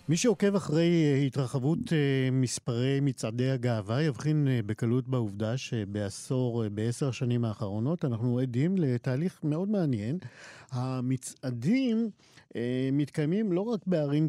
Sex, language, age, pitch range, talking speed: male, Hebrew, 50-69, 125-165 Hz, 100 wpm